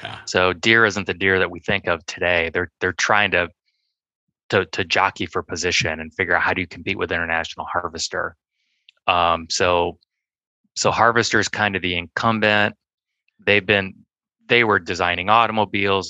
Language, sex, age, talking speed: English, male, 20-39, 165 wpm